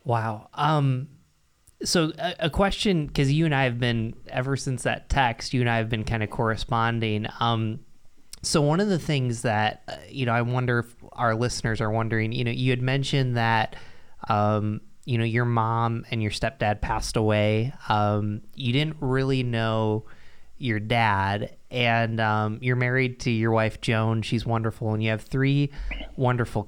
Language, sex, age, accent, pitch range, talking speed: English, male, 20-39, American, 110-135 Hz, 175 wpm